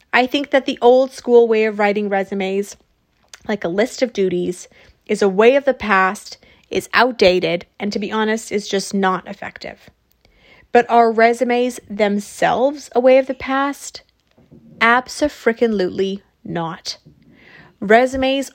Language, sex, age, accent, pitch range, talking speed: English, female, 30-49, American, 205-245 Hz, 140 wpm